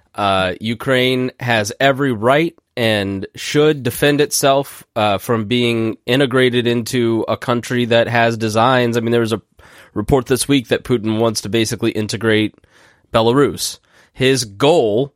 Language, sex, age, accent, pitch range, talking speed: English, male, 20-39, American, 115-140 Hz, 145 wpm